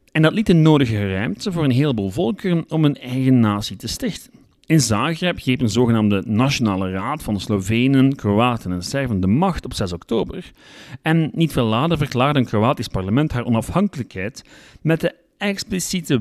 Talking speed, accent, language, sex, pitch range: 175 wpm, Dutch, Dutch, male, 105-150 Hz